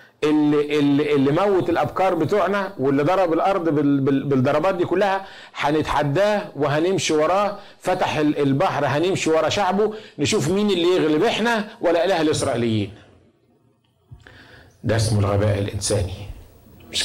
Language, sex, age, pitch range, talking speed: Arabic, male, 50-69, 120-160 Hz, 115 wpm